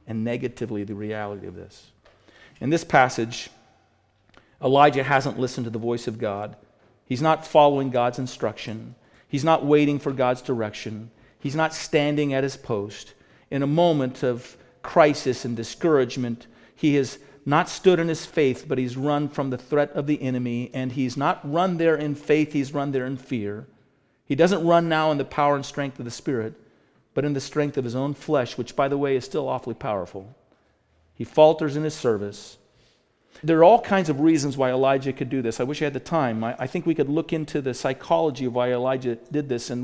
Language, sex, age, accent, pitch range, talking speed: English, male, 50-69, American, 125-150 Hz, 200 wpm